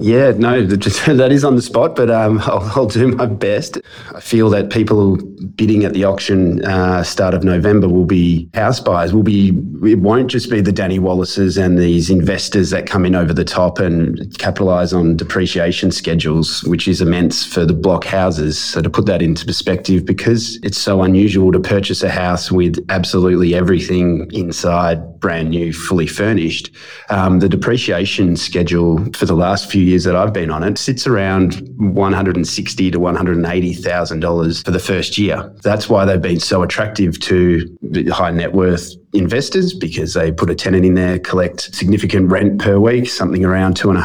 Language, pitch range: English, 90-100 Hz